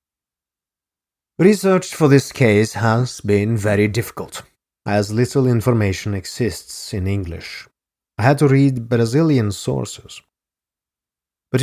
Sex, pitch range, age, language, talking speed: male, 95-120 Hz, 30-49, English, 110 wpm